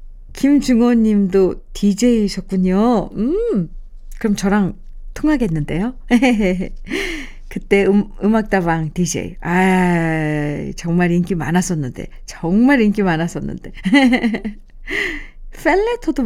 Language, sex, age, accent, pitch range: Korean, female, 40-59, native, 190-275 Hz